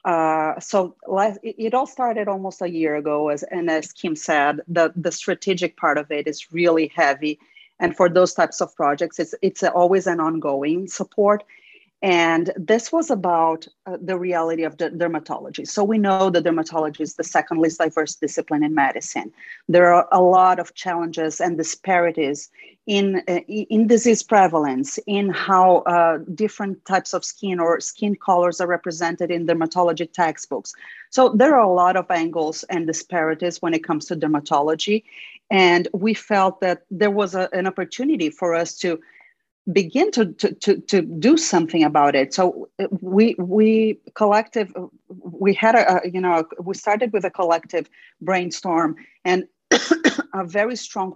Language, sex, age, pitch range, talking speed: English, female, 40-59, 165-195 Hz, 165 wpm